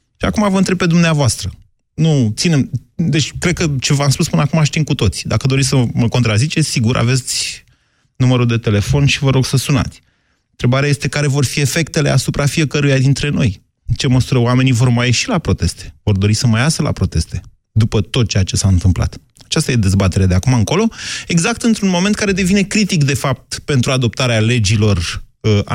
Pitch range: 105-155 Hz